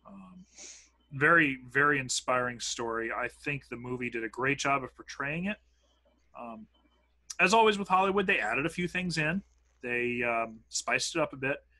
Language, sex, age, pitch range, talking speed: English, male, 30-49, 115-155 Hz, 175 wpm